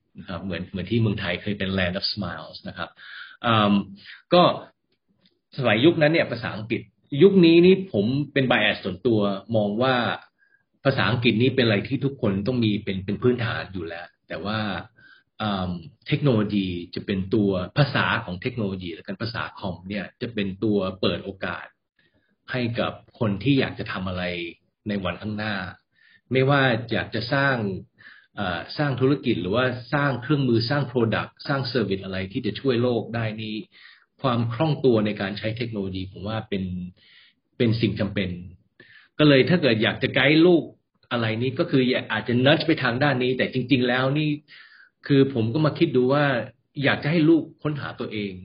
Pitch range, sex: 100-135 Hz, male